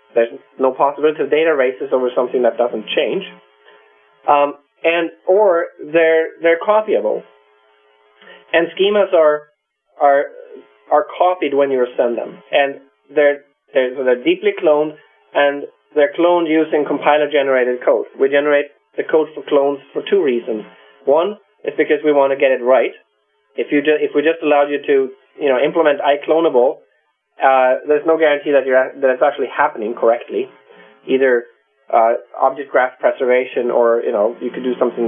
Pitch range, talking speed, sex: 120-160 Hz, 155 wpm, male